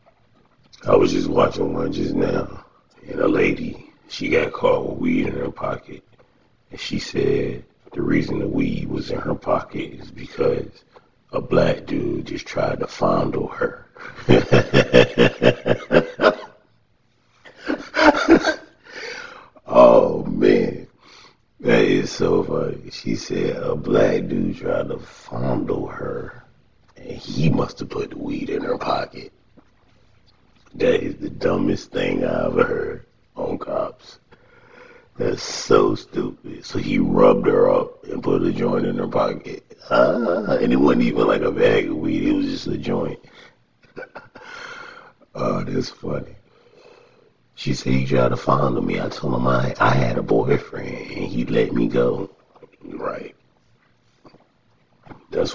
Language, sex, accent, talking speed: English, male, American, 140 wpm